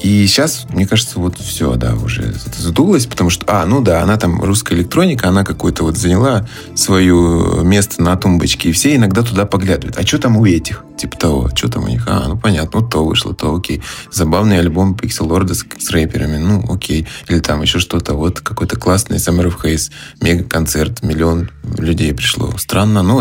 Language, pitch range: Russian, 85-110 Hz